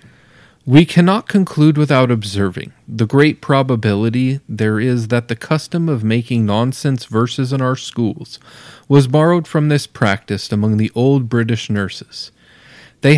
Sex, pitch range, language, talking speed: male, 105-140 Hz, English, 140 wpm